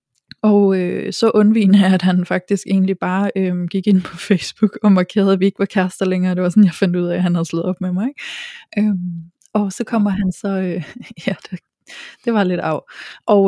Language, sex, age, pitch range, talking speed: Danish, female, 20-39, 180-210 Hz, 230 wpm